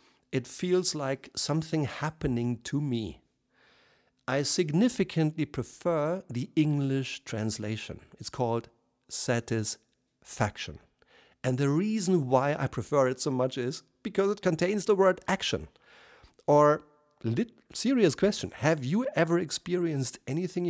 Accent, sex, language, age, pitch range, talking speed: German, male, German, 50-69, 120-165 Hz, 115 wpm